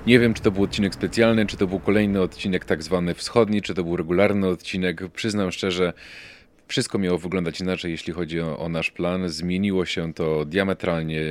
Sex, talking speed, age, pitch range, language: male, 190 wpm, 30-49, 85-95 Hz, Polish